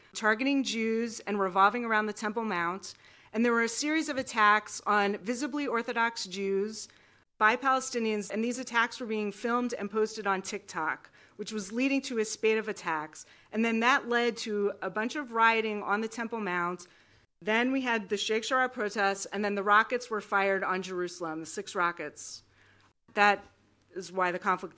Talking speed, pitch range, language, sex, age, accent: 180 wpm, 195-240 Hz, English, female, 40-59, American